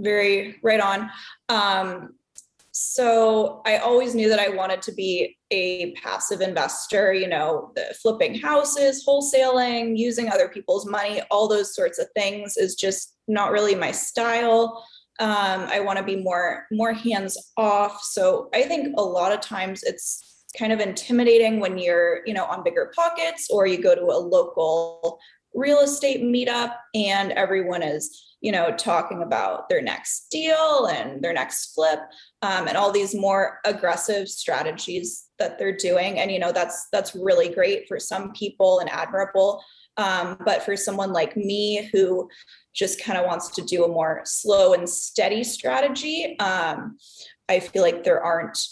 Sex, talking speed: female, 165 wpm